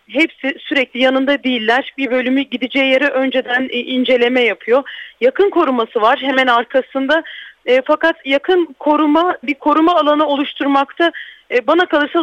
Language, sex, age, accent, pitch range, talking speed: Turkish, female, 40-59, native, 250-300 Hz, 125 wpm